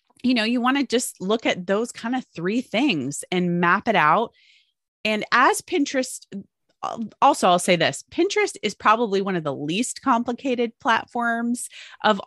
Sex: female